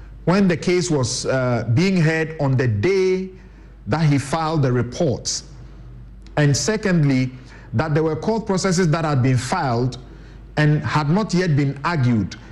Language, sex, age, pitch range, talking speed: English, male, 50-69, 135-180 Hz, 155 wpm